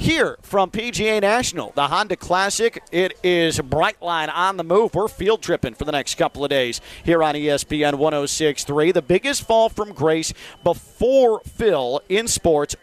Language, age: English, 40-59